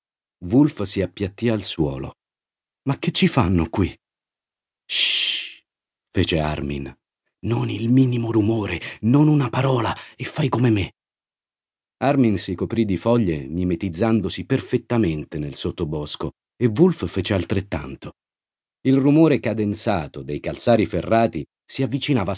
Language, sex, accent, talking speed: Italian, male, native, 120 wpm